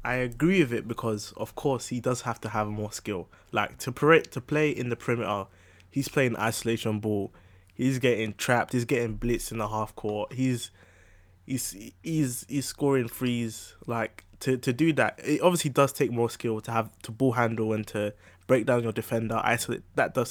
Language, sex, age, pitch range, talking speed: English, male, 20-39, 110-135 Hz, 200 wpm